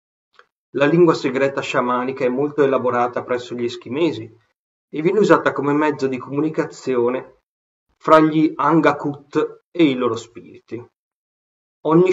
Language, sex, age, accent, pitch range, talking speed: Italian, male, 30-49, native, 120-150 Hz, 125 wpm